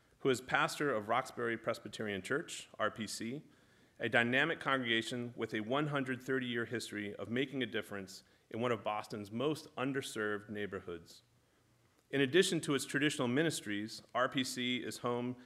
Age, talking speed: 40-59, 140 wpm